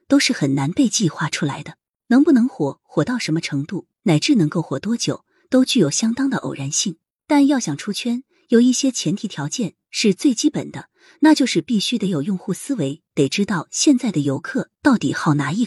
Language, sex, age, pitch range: Chinese, female, 30-49, 160-260 Hz